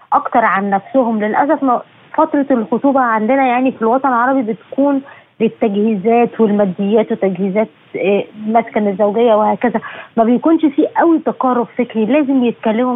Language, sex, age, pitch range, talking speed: Arabic, female, 20-39, 225-305 Hz, 125 wpm